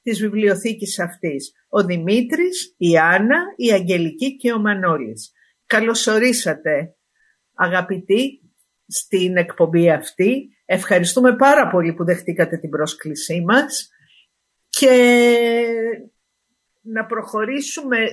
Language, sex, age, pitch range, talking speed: Greek, female, 50-69, 175-230 Hz, 95 wpm